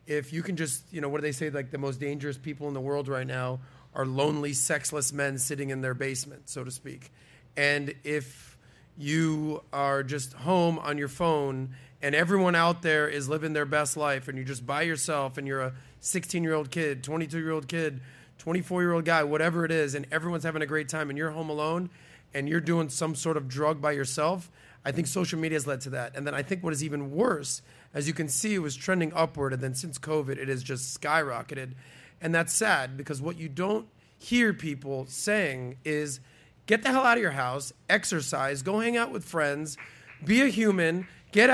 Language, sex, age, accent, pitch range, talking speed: English, male, 30-49, American, 140-175 Hz, 210 wpm